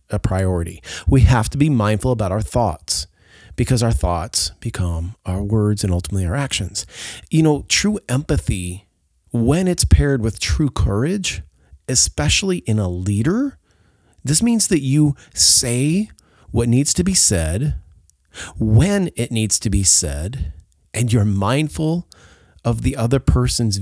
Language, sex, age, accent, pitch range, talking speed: English, male, 30-49, American, 95-130 Hz, 145 wpm